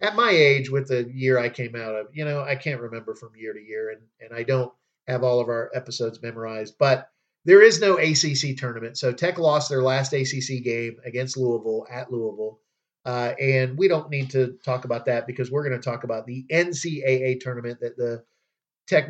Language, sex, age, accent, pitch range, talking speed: English, male, 40-59, American, 120-145 Hz, 210 wpm